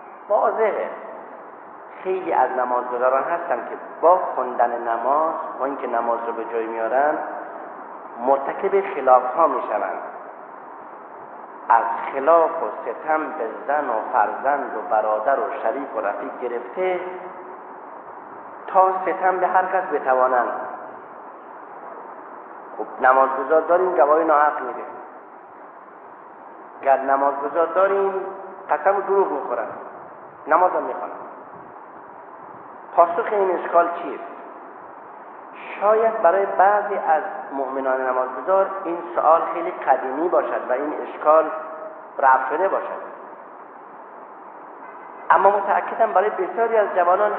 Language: Persian